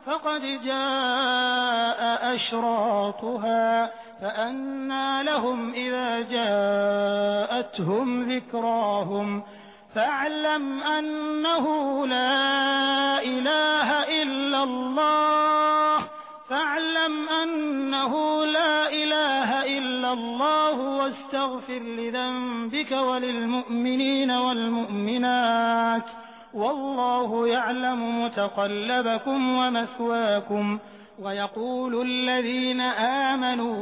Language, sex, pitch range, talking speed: Hindi, male, 230-275 Hz, 55 wpm